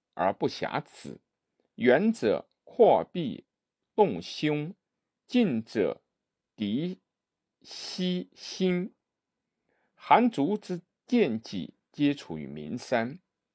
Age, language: 50-69, Chinese